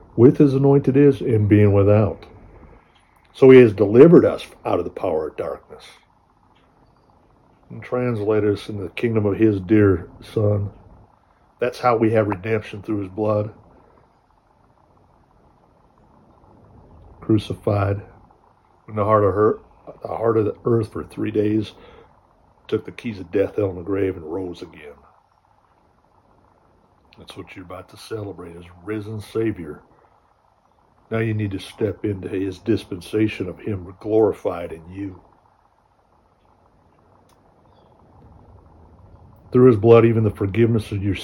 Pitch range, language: 95-115 Hz, English